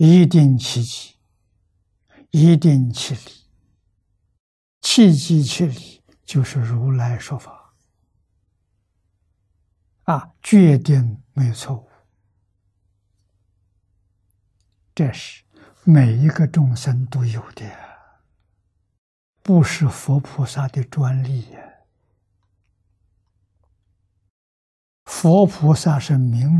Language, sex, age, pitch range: Chinese, male, 60-79, 95-135 Hz